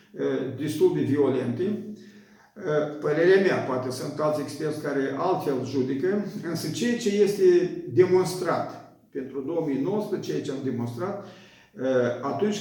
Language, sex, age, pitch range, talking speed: Romanian, male, 50-69, 130-185 Hz, 110 wpm